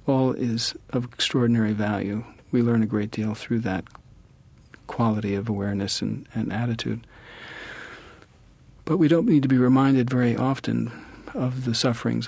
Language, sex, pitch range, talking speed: English, male, 110-125 Hz, 145 wpm